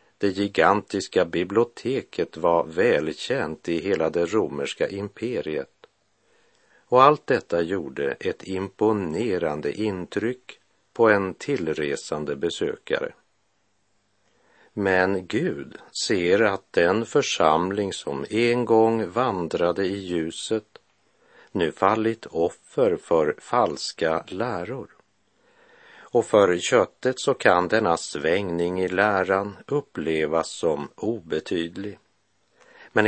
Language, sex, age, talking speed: Swedish, male, 50-69, 95 wpm